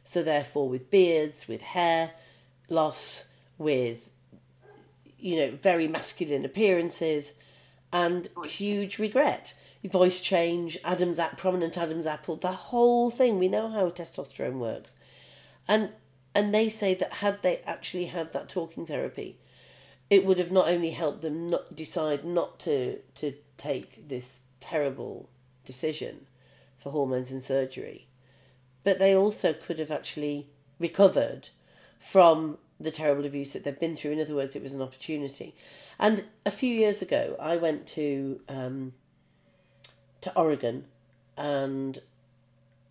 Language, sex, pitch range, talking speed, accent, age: English, female, 135-175 Hz, 135 wpm, British, 40-59